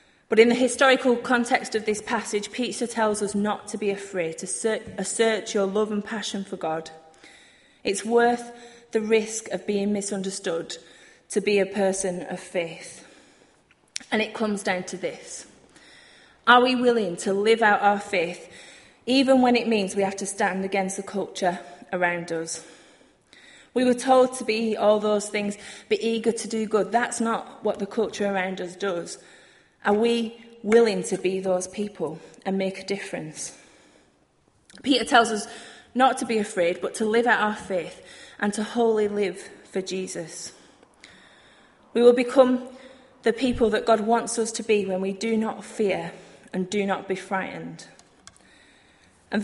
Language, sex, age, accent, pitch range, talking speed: English, female, 30-49, British, 195-230 Hz, 165 wpm